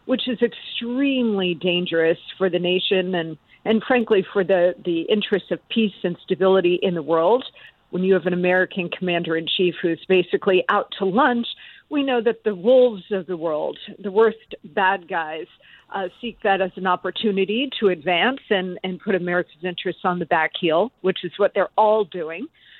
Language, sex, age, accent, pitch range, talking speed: English, female, 50-69, American, 180-225 Hz, 180 wpm